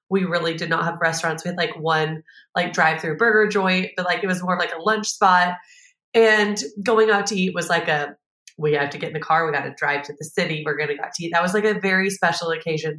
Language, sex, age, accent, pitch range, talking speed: English, female, 30-49, American, 160-195 Hz, 280 wpm